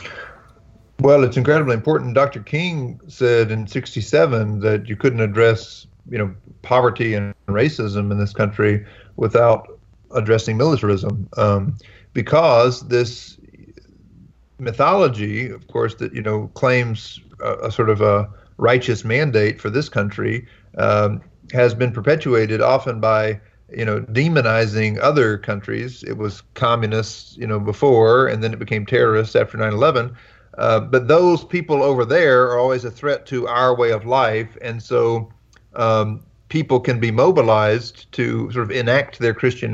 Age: 40-59